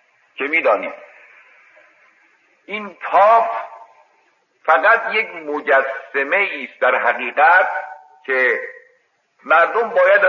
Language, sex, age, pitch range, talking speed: Persian, male, 50-69, 130-220 Hz, 75 wpm